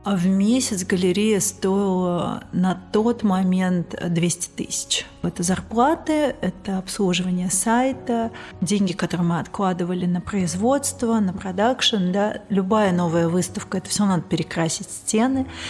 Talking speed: 120 wpm